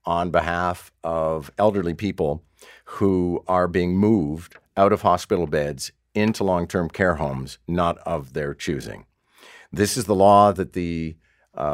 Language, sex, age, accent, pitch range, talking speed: English, male, 50-69, American, 80-95 Hz, 145 wpm